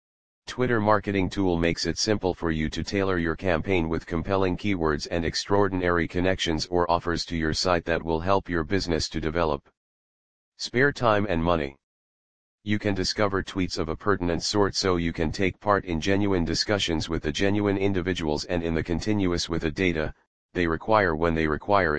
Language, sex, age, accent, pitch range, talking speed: English, male, 40-59, American, 80-100 Hz, 180 wpm